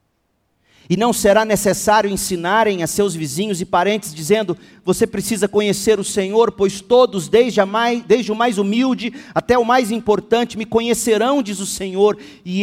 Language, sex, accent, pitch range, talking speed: Portuguese, male, Brazilian, 150-225 Hz, 165 wpm